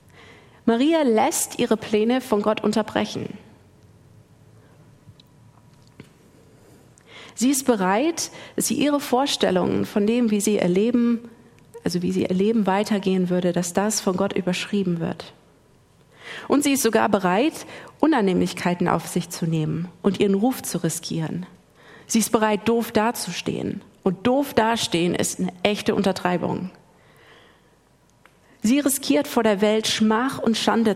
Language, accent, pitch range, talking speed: German, German, 185-235 Hz, 130 wpm